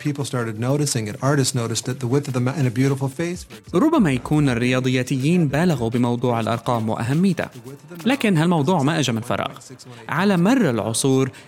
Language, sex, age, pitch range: Arabic, male, 30-49, 125-155 Hz